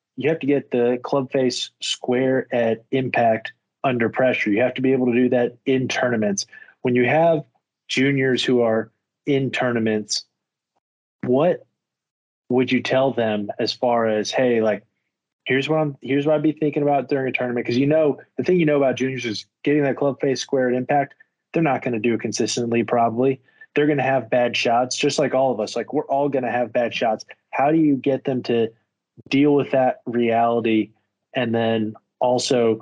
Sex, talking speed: male, 200 wpm